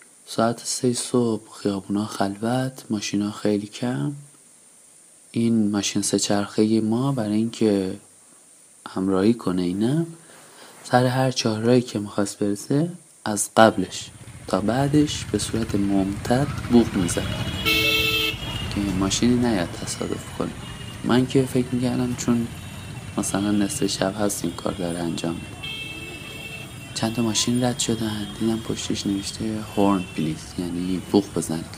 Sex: male